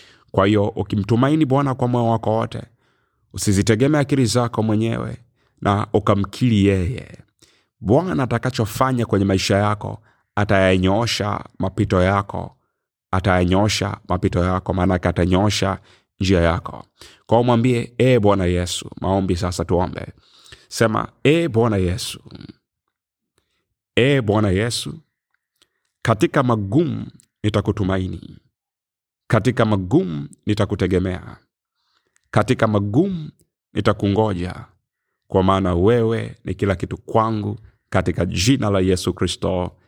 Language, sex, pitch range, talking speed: Swahili, male, 95-120 Hz, 100 wpm